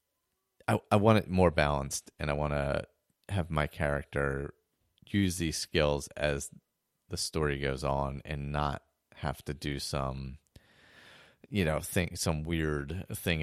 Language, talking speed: English, 145 wpm